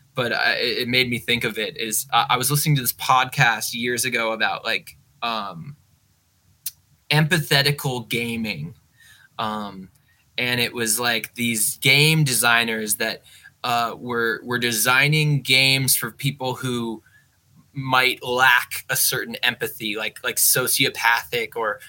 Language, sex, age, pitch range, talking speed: English, male, 20-39, 115-135 Hz, 130 wpm